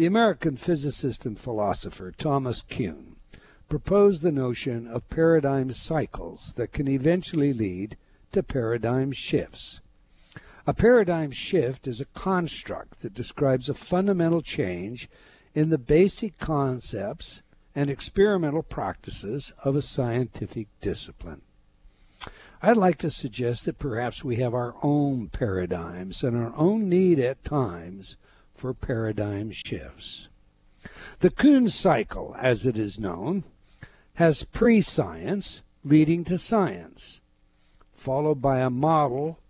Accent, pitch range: American, 115-165 Hz